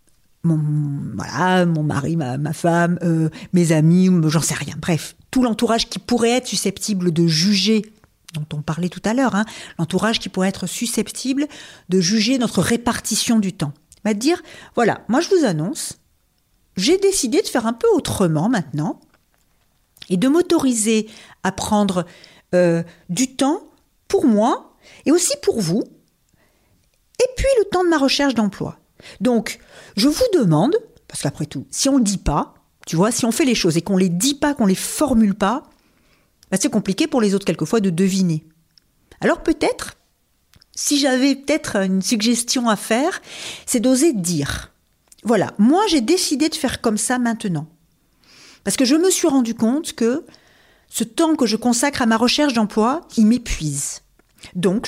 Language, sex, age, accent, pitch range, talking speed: French, female, 40-59, French, 175-265 Hz, 170 wpm